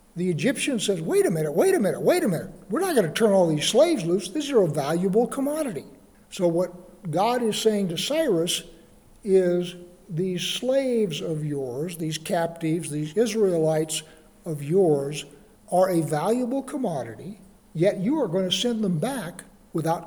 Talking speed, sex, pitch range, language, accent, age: 170 wpm, male, 165-215 Hz, English, American, 60-79